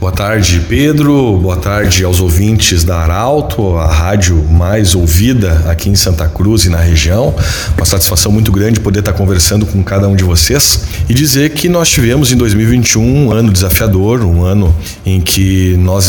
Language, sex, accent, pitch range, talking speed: Portuguese, male, Brazilian, 90-110 Hz, 175 wpm